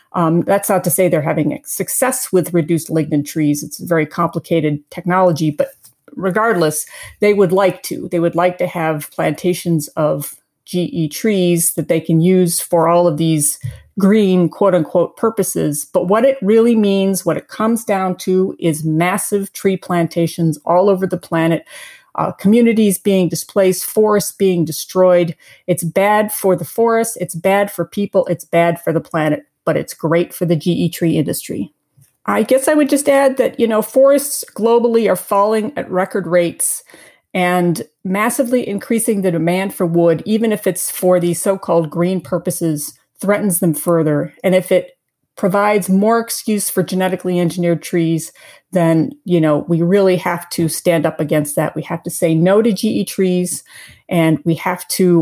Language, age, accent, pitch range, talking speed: English, 40-59, American, 165-200 Hz, 170 wpm